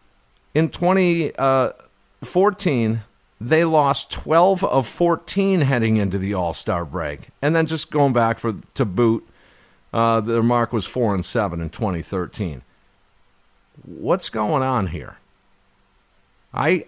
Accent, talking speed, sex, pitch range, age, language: American, 115 wpm, male, 100-150 Hz, 50-69, English